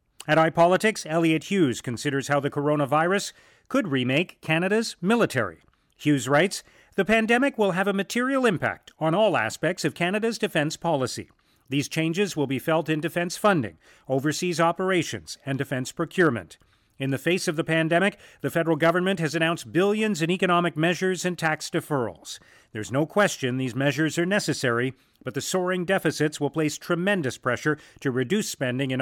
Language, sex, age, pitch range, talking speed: English, male, 40-59, 135-180 Hz, 160 wpm